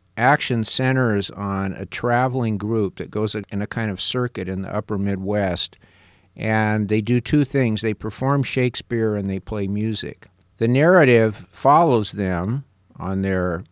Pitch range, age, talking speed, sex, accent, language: 95-115 Hz, 50-69, 155 wpm, male, American, English